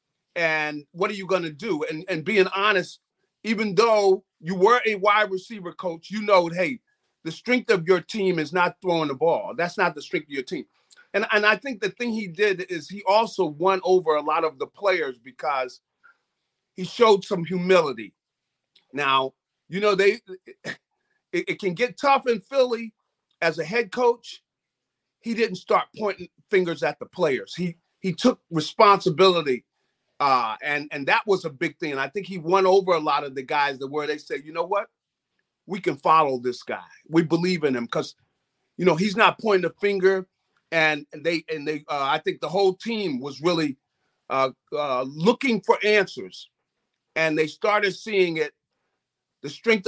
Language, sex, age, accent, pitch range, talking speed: English, male, 40-59, American, 155-210 Hz, 190 wpm